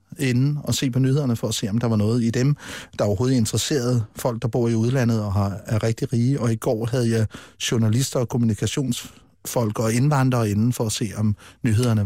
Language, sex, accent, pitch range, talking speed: Danish, male, native, 110-145 Hz, 210 wpm